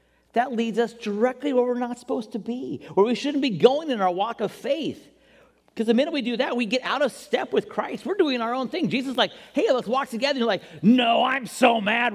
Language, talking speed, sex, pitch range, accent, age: English, 255 wpm, male, 170-265 Hz, American, 40-59